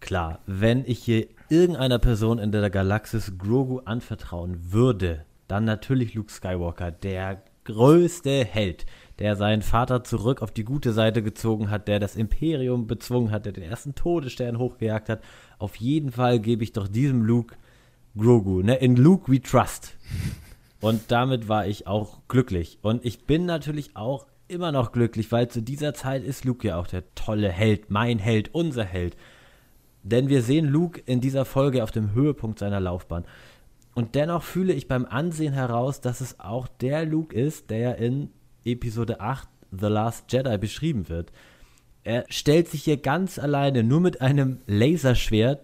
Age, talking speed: 30-49, 165 wpm